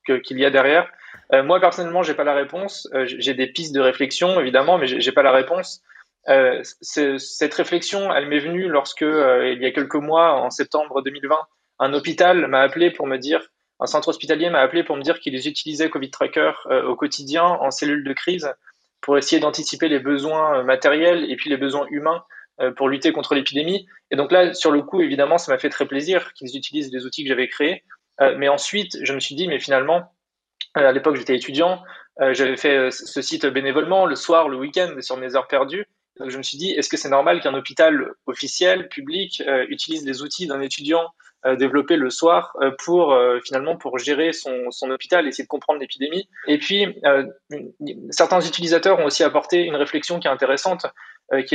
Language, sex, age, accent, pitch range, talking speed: French, male, 20-39, French, 135-170 Hz, 200 wpm